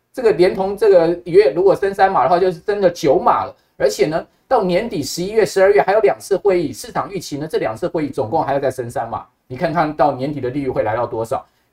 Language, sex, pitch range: Chinese, male, 140-200 Hz